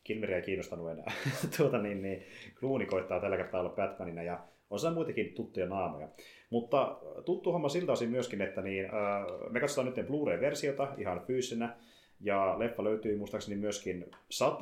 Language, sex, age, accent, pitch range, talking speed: Finnish, male, 30-49, native, 90-120 Hz, 160 wpm